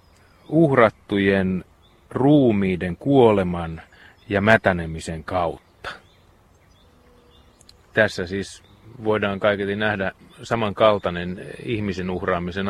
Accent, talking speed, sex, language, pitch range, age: native, 65 wpm, male, Finnish, 90-110 Hz, 30-49